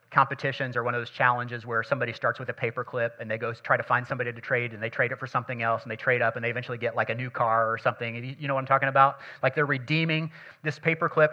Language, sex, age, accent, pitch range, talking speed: English, male, 40-59, American, 130-170 Hz, 280 wpm